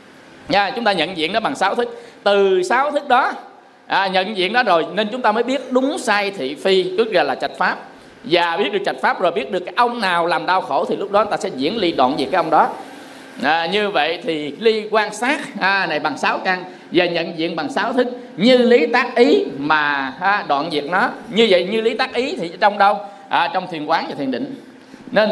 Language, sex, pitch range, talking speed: Vietnamese, male, 170-240 Hz, 240 wpm